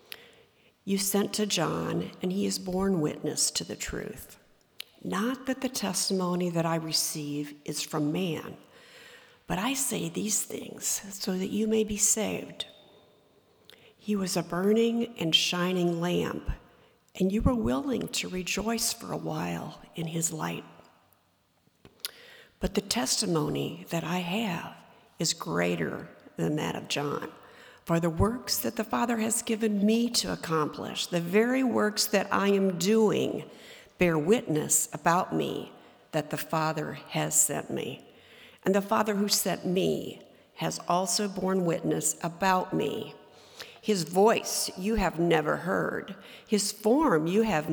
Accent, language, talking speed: American, English, 145 wpm